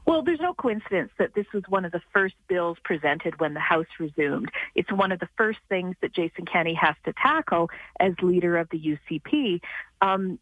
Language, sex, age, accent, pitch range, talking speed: English, female, 40-59, American, 180-240 Hz, 200 wpm